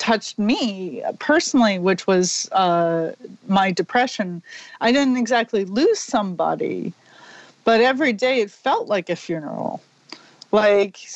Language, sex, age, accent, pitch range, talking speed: English, female, 40-59, American, 180-225 Hz, 120 wpm